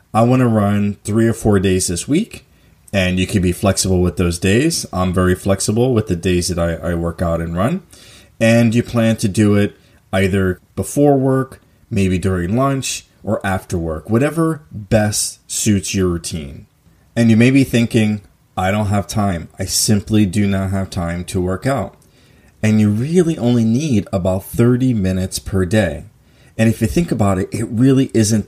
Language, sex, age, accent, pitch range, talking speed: English, male, 30-49, American, 95-115 Hz, 185 wpm